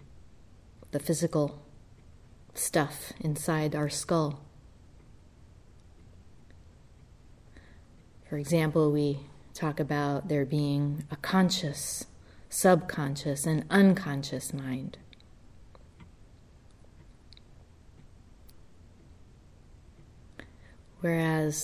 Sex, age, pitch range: female, 30-49, 110-165 Hz